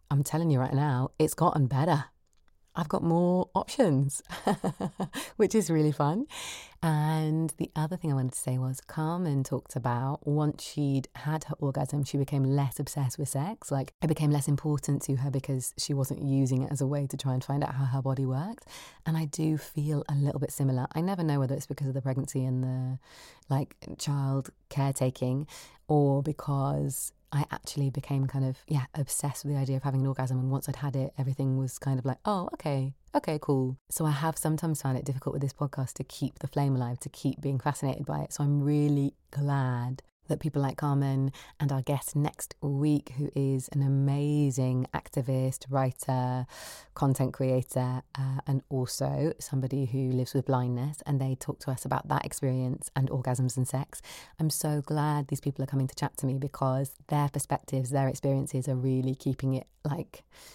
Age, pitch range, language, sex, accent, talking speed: 30-49, 135-150 Hz, English, female, British, 195 wpm